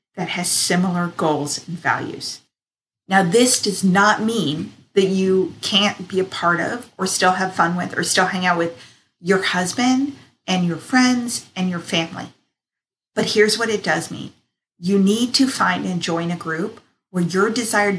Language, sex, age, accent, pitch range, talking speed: English, female, 40-59, American, 175-210 Hz, 175 wpm